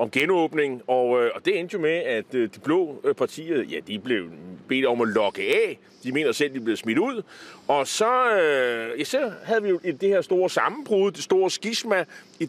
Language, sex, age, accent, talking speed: Danish, male, 30-49, native, 220 wpm